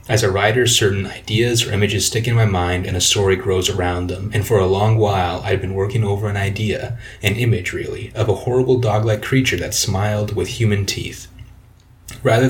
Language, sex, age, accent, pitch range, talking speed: English, male, 30-49, American, 95-120 Hz, 200 wpm